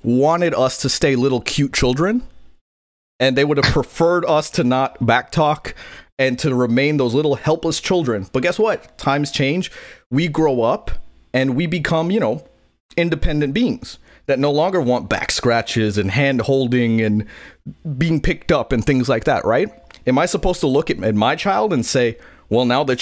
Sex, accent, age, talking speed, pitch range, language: male, American, 30-49, 175 wpm, 120-165 Hz, English